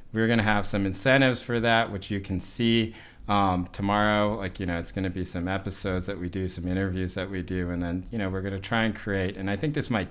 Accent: American